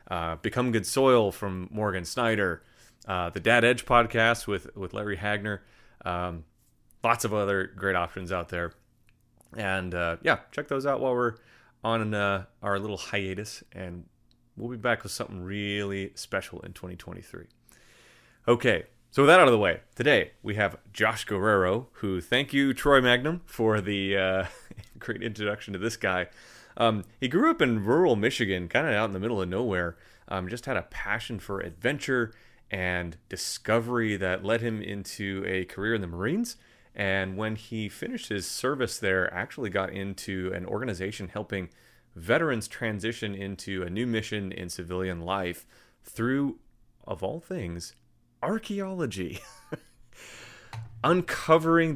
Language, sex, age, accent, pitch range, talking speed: English, male, 30-49, American, 95-120 Hz, 155 wpm